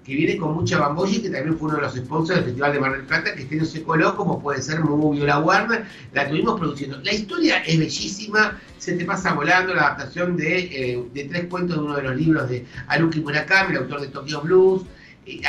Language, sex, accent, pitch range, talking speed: Spanish, male, Argentinian, 145-190 Hz, 235 wpm